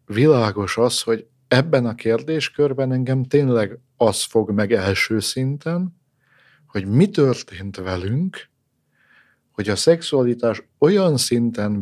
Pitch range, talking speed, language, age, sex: 105-130 Hz, 110 wpm, Hungarian, 50-69, male